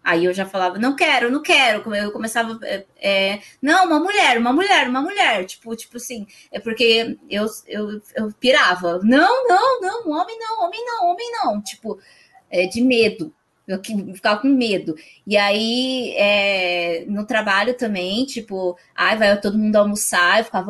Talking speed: 170 wpm